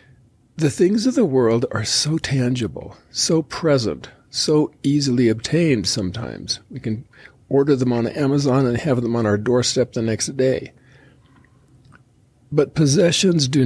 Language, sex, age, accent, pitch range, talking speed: English, male, 50-69, American, 115-140 Hz, 140 wpm